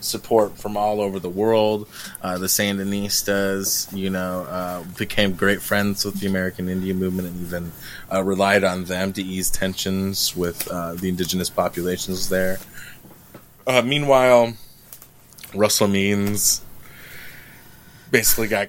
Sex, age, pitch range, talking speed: male, 20-39, 95-115 Hz, 130 wpm